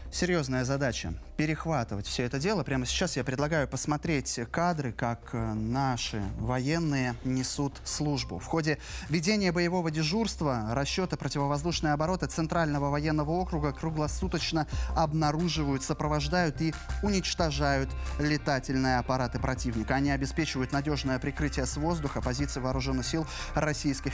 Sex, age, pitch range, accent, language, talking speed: male, 20-39, 130-165 Hz, native, Russian, 115 wpm